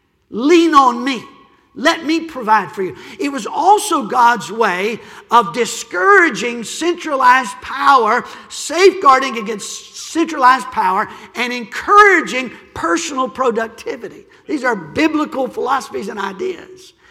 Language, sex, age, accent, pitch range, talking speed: English, male, 50-69, American, 235-325 Hz, 110 wpm